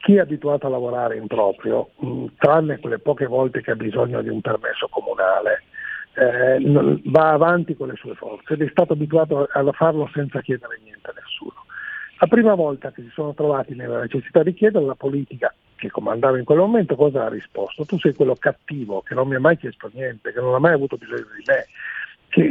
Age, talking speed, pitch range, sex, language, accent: 50-69, 205 wpm, 140-195 Hz, male, Italian, native